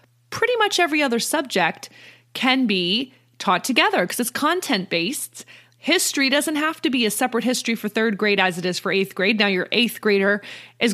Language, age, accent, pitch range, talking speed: English, 30-49, American, 195-255 Hz, 185 wpm